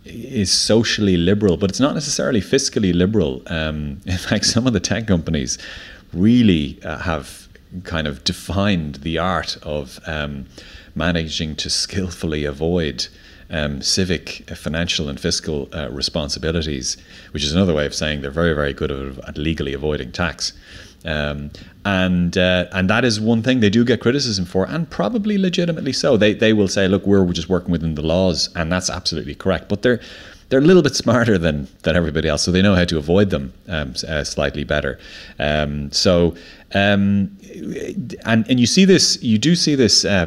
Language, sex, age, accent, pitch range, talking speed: English, male, 30-49, Irish, 75-100 Hz, 180 wpm